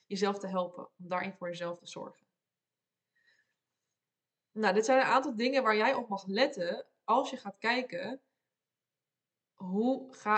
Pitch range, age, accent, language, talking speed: 185-235 Hz, 20-39, Dutch, Dutch, 150 wpm